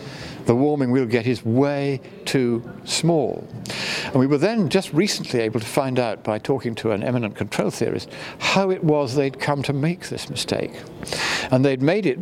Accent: British